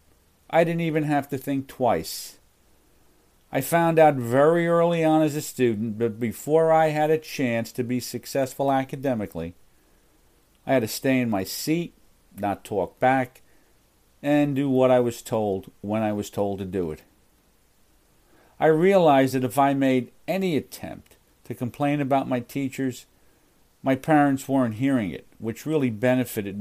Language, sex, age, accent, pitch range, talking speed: English, male, 50-69, American, 110-140 Hz, 160 wpm